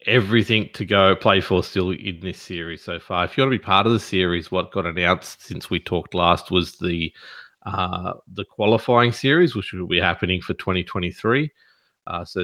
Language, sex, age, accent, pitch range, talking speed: English, male, 30-49, Australian, 90-105 Hz, 190 wpm